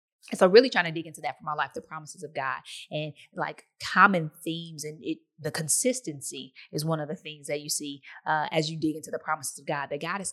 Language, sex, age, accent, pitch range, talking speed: English, female, 20-39, American, 150-175 Hz, 245 wpm